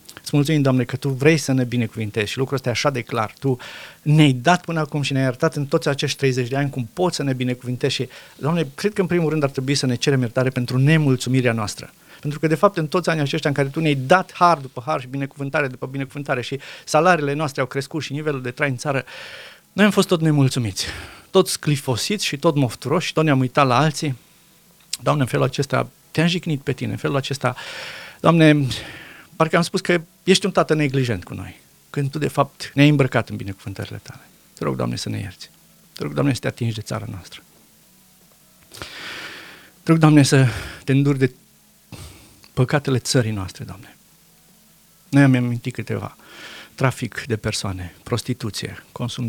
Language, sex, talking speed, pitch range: Romanian, male, 195 wpm, 120-155 Hz